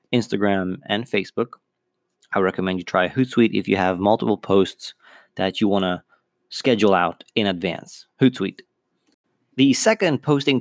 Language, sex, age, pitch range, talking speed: English, male, 20-39, 100-125 Hz, 135 wpm